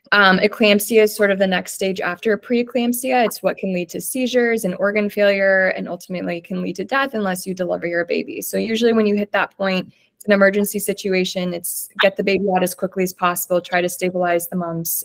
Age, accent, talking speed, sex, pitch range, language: 20-39, American, 220 wpm, female, 185-210 Hz, English